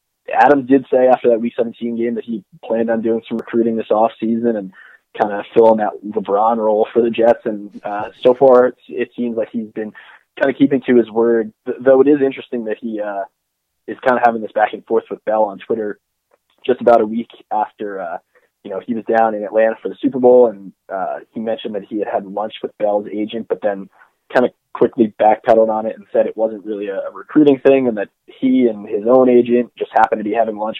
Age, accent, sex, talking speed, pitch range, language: 20-39, American, male, 240 wpm, 110-125 Hz, English